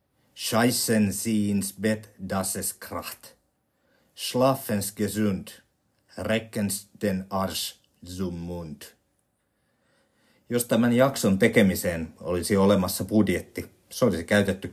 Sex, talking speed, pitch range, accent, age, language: male, 90 wpm, 90-105 Hz, native, 50-69, Finnish